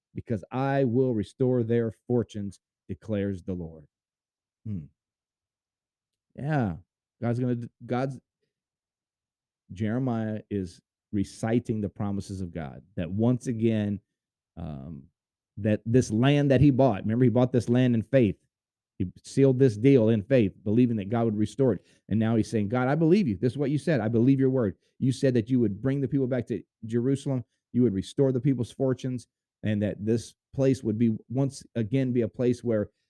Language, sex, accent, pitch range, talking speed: English, male, American, 100-130 Hz, 175 wpm